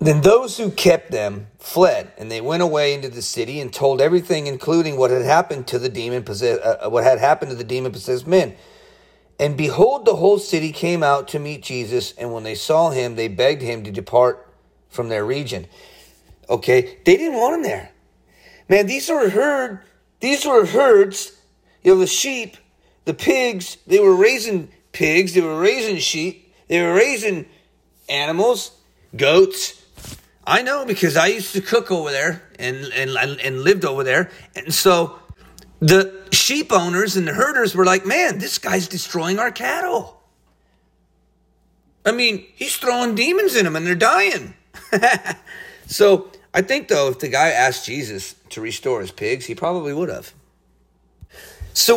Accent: American